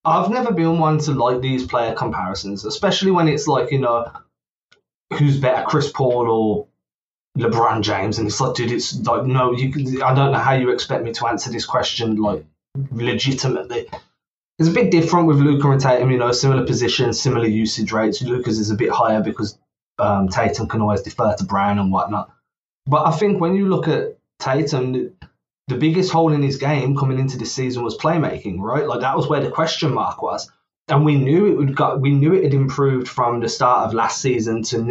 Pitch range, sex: 120-155 Hz, male